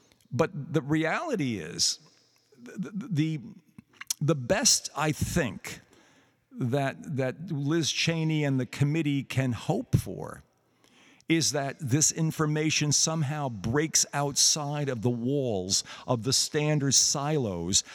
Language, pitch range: English, 120-155 Hz